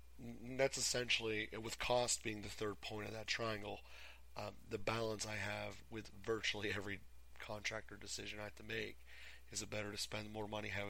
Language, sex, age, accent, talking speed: English, male, 30-49, American, 180 wpm